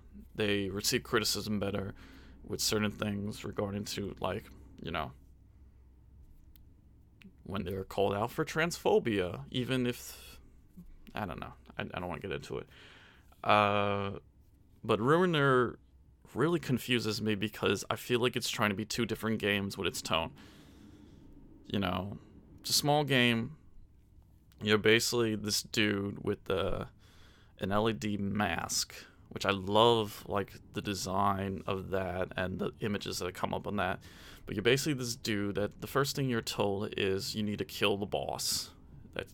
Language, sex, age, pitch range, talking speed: English, male, 20-39, 95-110 Hz, 155 wpm